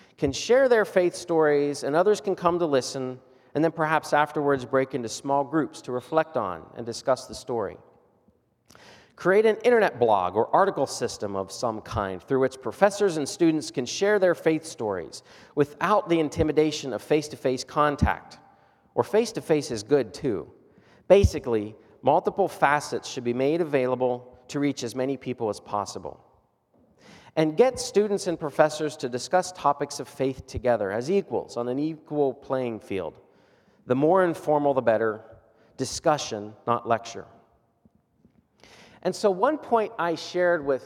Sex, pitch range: male, 130-175 Hz